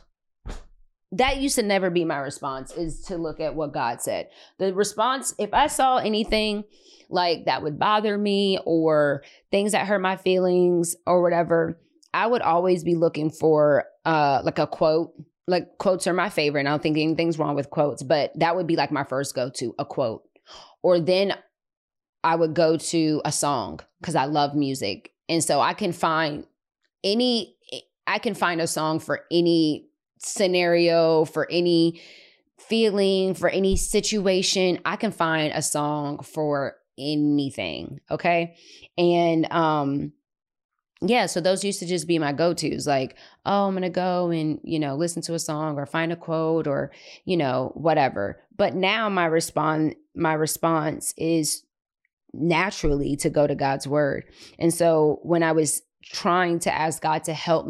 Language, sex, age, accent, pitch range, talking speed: English, female, 20-39, American, 155-185 Hz, 165 wpm